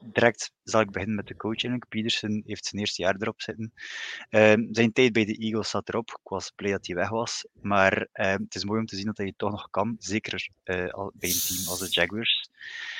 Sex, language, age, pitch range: male, Dutch, 20-39, 95-110 Hz